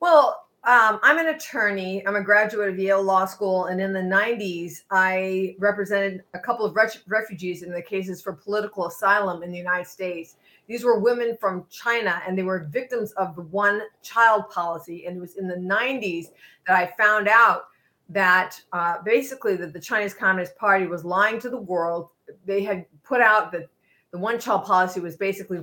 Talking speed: 185 wpm